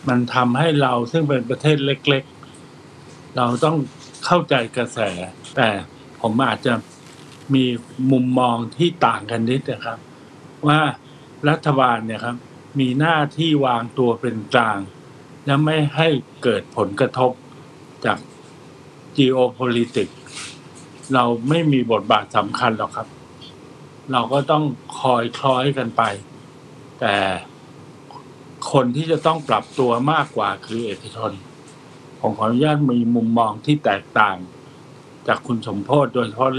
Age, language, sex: 60-79, Thai, male